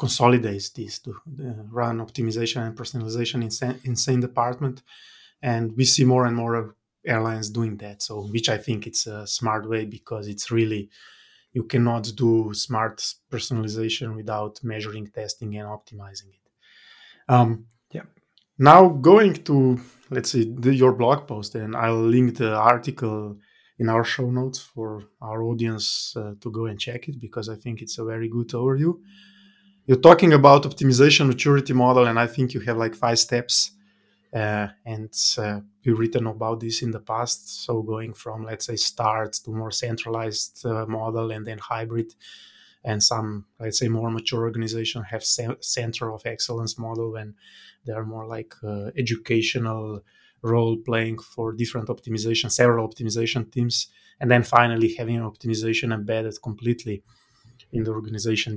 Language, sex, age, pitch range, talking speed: English, male, 20-39, 110-120 Hz, 160 wpm